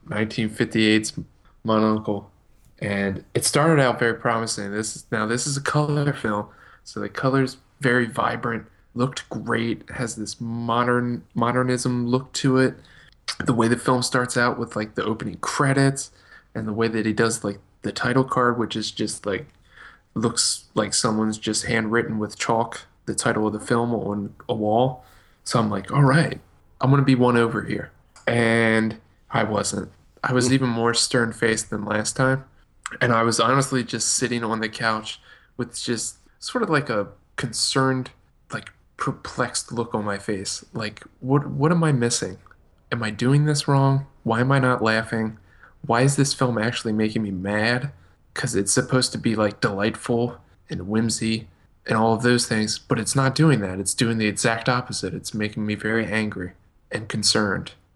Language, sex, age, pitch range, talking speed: English, male, 20-39, 110-125 Hz, 175 wpm